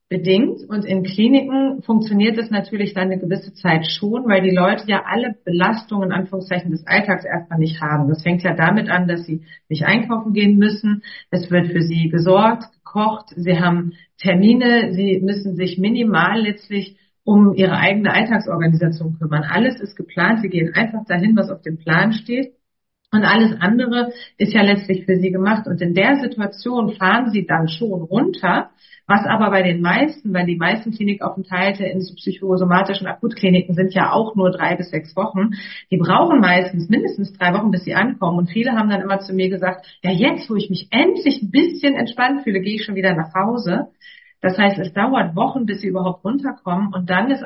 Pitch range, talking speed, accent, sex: 180-220 Hz, 190 wpm, German, female